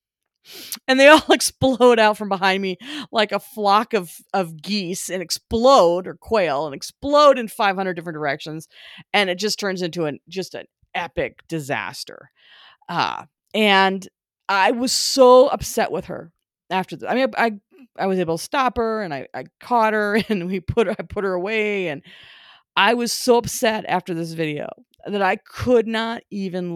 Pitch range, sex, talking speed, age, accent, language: 165-220 Hz, female, 180 wpm, 40-59, American, English